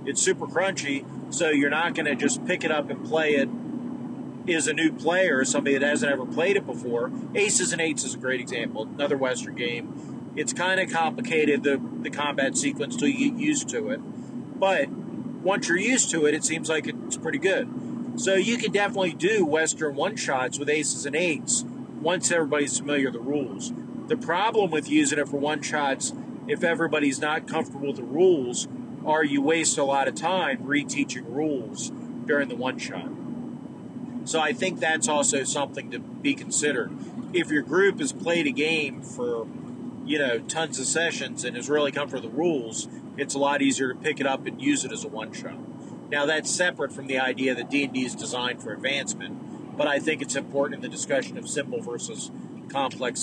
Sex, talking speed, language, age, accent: male, 195 wpm, English, 40-59, American